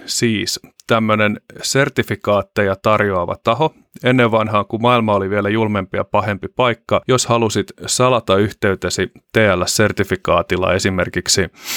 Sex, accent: male, native